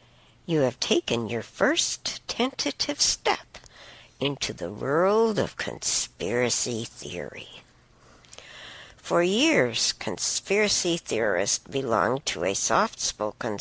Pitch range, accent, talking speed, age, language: 125-190 Hz, American, 95 wpm, 60-79, English